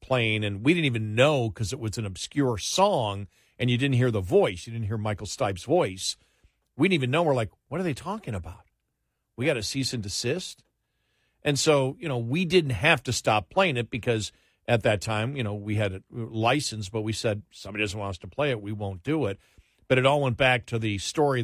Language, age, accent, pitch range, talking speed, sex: English, 50-69, American, 100-125 Hz, 235 wpm, male